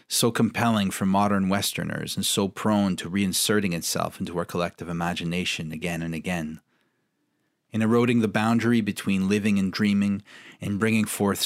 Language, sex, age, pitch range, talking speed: English, male, 30-49, 90-105 Hz, 150 wpm